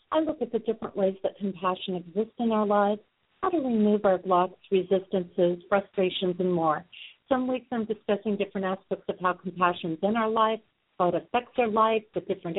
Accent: American